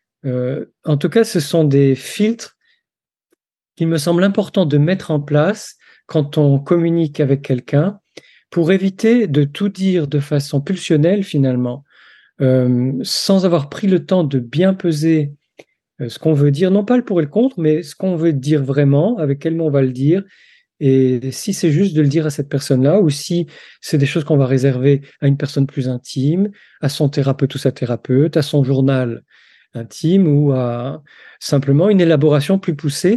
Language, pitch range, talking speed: French, 135-180 Hz, 190 wpm